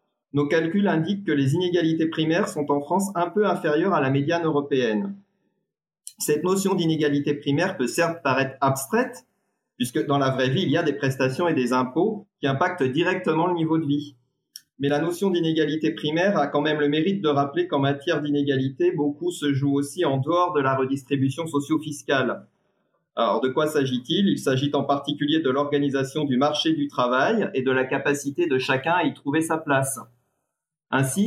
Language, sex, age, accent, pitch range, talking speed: French, male, 30-49, French, 135-165 Hz, 185 wpm